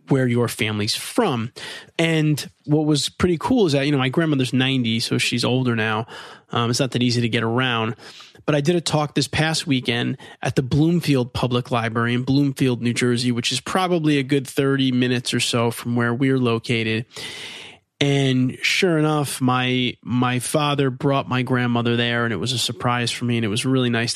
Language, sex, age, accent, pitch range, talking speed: English, male, 30-49, American, 120-135 Hz, 200 wpm